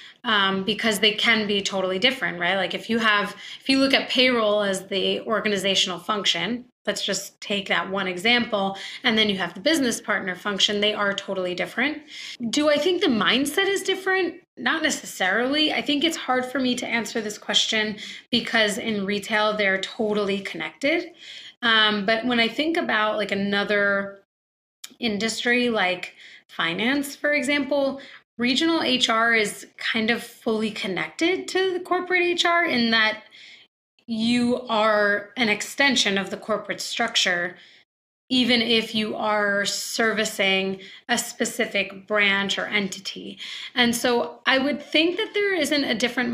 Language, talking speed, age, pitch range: English, 150 wpm, 20-39, 200-255 Hz